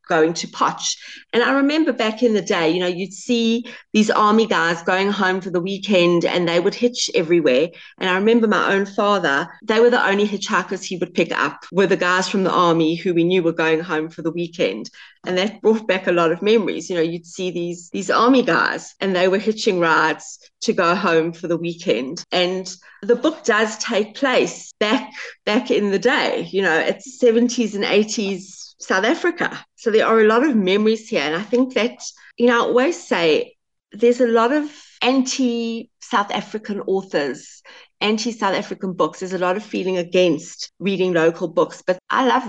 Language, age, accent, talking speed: English, 30-49, British, 200 wpm